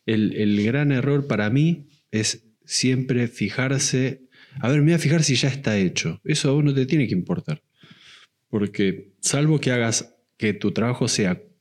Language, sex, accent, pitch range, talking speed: Spanish, male, Argentinian, 100-130 Hz, 180 wpm